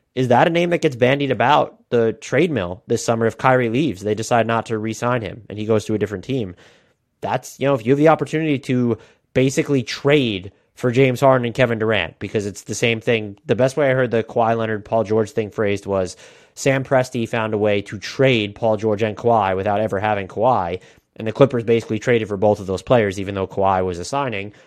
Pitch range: 110-150 Hz